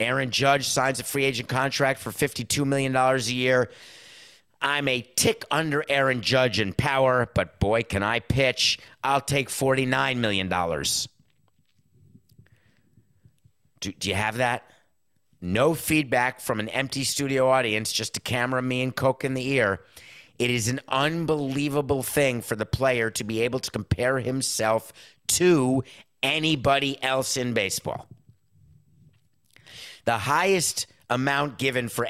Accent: American